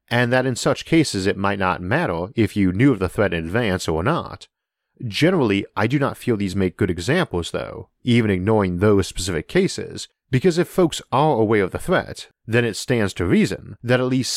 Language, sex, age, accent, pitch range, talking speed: English, male, 40-59, American, 95-125 Hz, 210 wpm